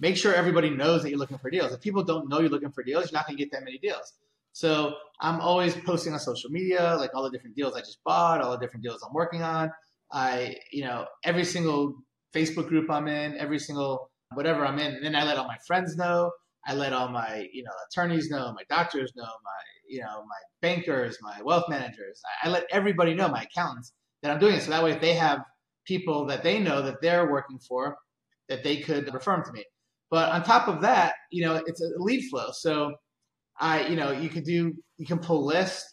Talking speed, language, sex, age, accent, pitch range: 235 wpm, English, male, 30-49, American, 135-170 Hz